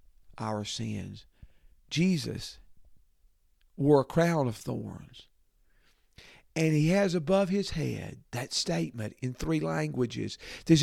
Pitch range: 125-180 Hz